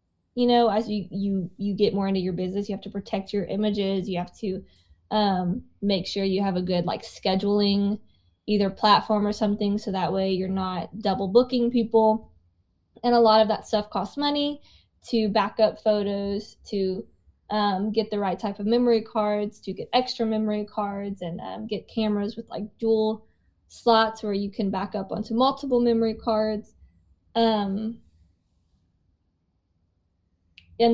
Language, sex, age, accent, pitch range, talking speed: English, female, 10-29, American, 195-220 Hz, 165 wpm